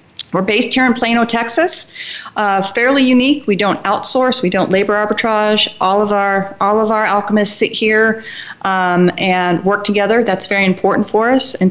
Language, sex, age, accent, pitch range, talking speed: English, female, 40-59, American, 185-220 Hz, 180 wpm